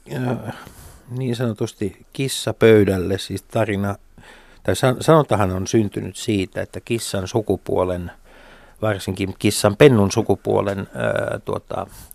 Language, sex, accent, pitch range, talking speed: Finnish, male, native, 80-115 Hz, 100 wpm